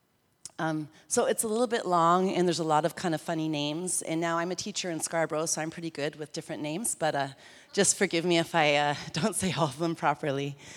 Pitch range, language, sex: 145-180 Hz, English, female